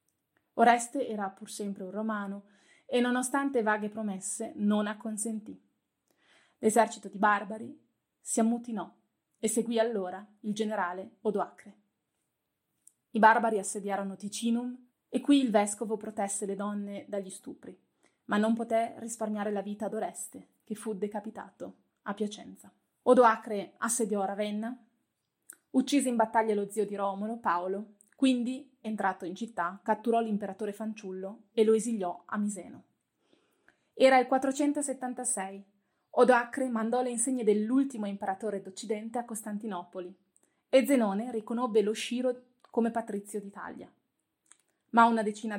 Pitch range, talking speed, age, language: 205-240 Hz, 125 wpm, 30-49, Italian